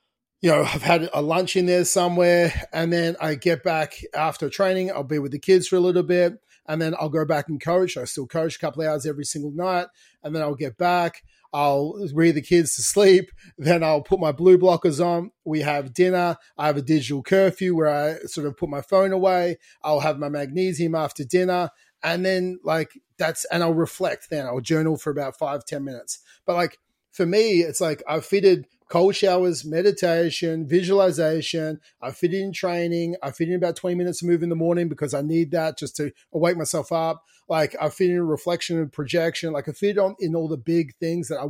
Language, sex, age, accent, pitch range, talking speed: English, male, 30-49, Australian, 155-180 Hz, 215 wpm